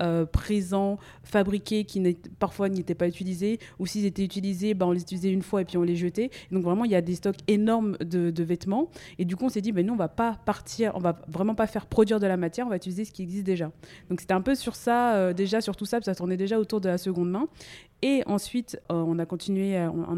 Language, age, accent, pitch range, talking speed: French, 20-39, French, 175-205 Hz, 275 wpm